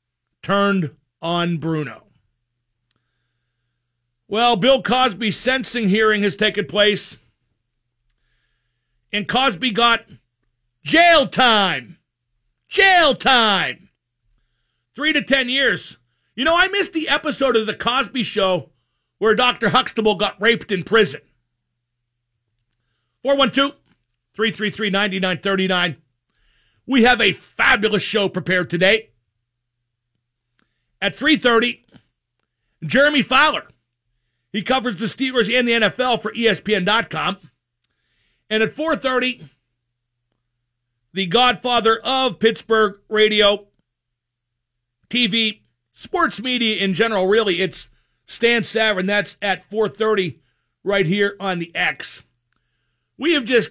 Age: 50-69